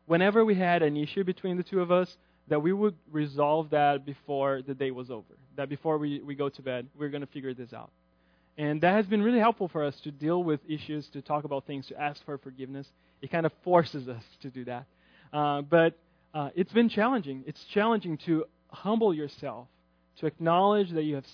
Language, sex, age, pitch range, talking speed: English, male, 20-39, 140-175 Hz, 215 wpm